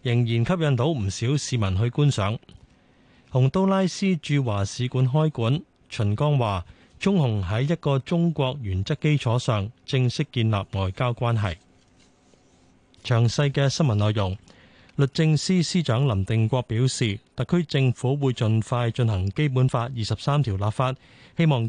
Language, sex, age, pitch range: Chinese, male, 30-49, 110-145 Hz